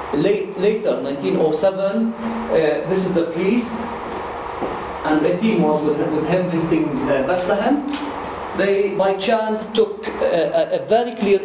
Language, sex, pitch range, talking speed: English, male, 165-210 Hz, 135 wpm